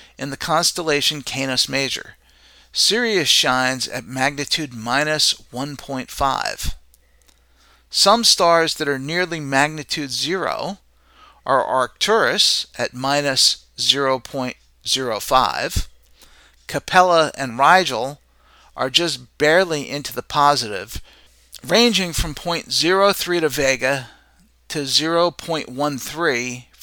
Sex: male